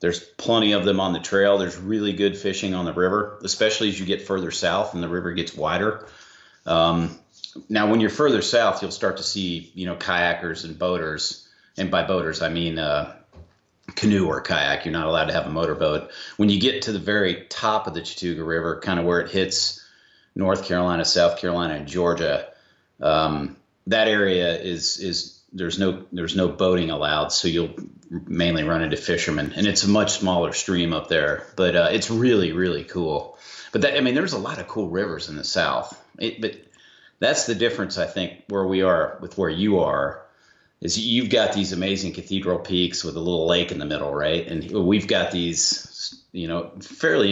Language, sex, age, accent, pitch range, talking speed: English, male, 40-59, American, 85-100 Hz, 200 wpm